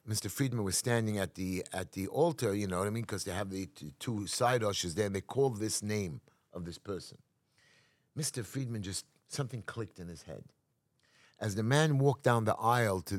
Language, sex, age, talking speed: English, male, 50-69, 210 wpm